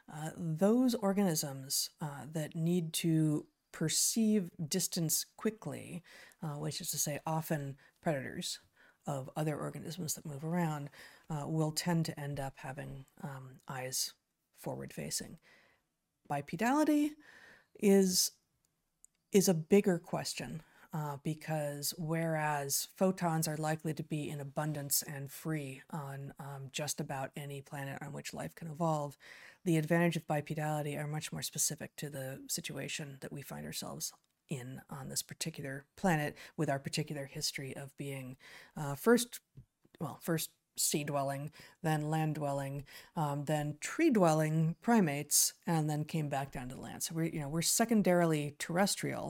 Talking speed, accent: 140 wpm, American